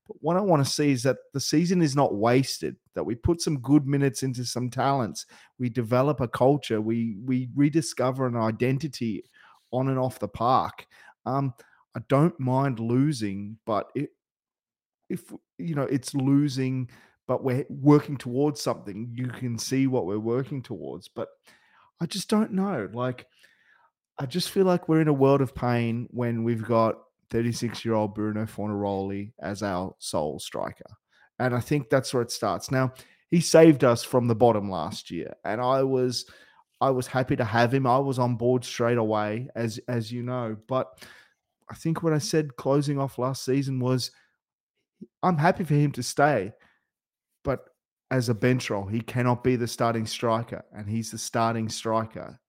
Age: 30-49